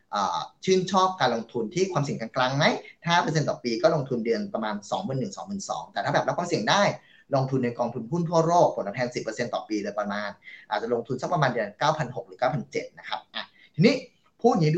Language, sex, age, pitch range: English, male, 20-39, 125-165 Hz